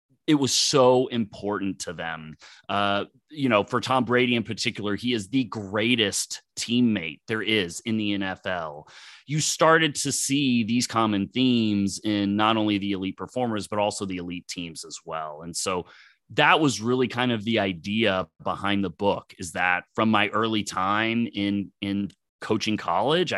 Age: 30-49